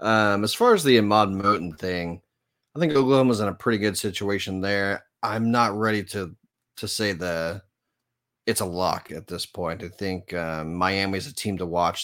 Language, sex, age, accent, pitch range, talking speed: English, male, 30-49, American, 90-110 Hz, 195 wpm